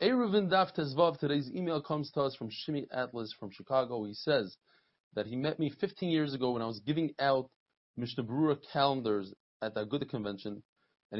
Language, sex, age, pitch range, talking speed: English, male, 20-39, 120-160 Hz, 175 wpm